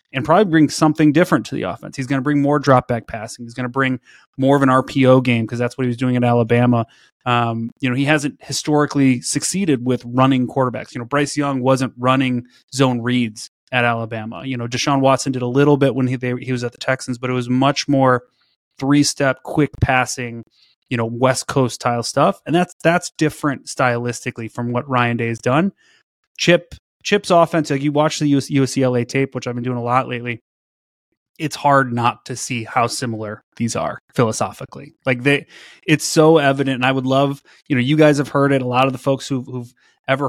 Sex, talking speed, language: male, 215 wpm, English